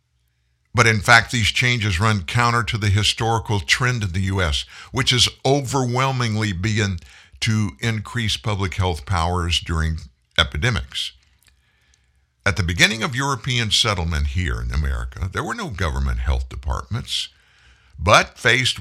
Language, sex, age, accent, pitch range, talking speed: English, male, 60-79, American, 90-125 Hz, 135 wpm